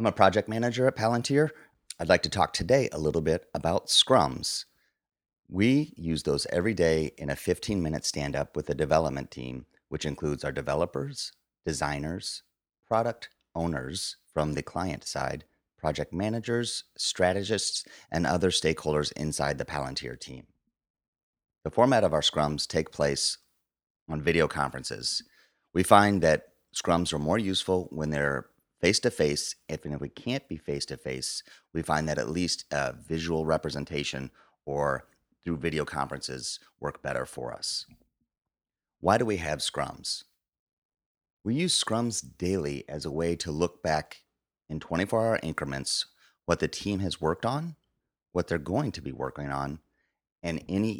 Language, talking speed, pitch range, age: English, 145 wpm, 70-95 Hz, 30-49